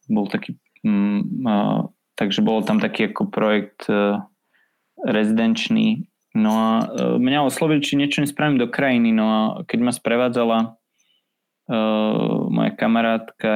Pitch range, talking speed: 110-160 Hz, 135 wpm